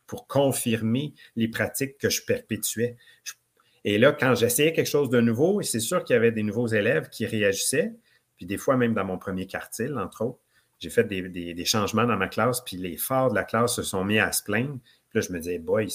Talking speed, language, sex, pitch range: 235 wpm, French, male, 105-125 Hz